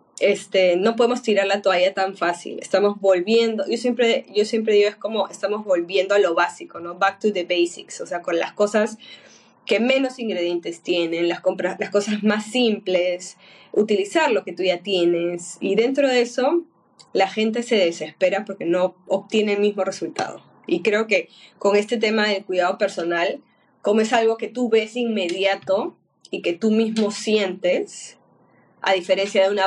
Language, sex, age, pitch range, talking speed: Spanish, female, 10-29, 180-225 Hz, 175 wpm